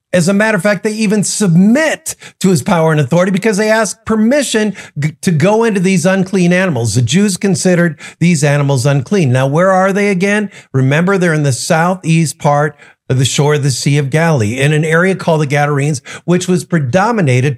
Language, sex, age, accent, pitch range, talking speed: English, male, 50-69, American, 155-200 Hz, 200 wpm